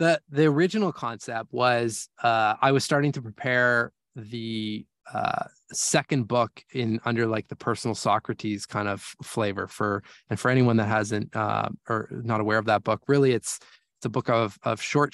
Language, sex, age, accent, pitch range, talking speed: English, male, 20-39, American, 105-135 Hz, 180 wpm